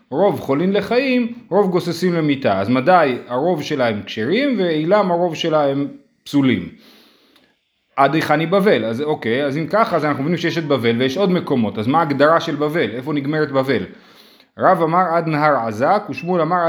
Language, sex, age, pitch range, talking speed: Hebrew, male, 30-49, 140-185 Hz, 170 wpm